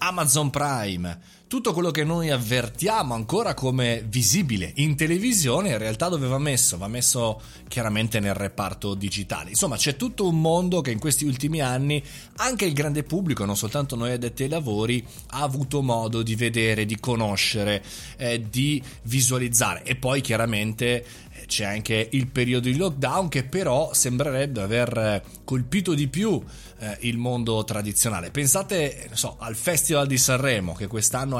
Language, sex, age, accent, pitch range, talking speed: Italian, male, 30-49, native, 115-160 Hz, 155 wpm